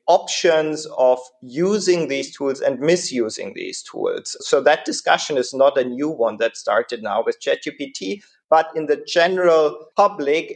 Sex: male